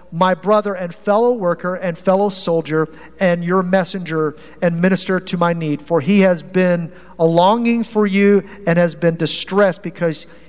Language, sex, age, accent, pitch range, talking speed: English, male, 50-69, American, 155-195 Hz, 165 wpm